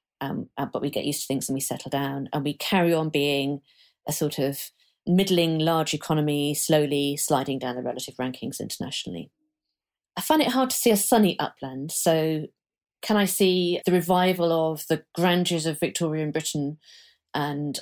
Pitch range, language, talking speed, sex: 145-190 Hz, English, 170 wpm, female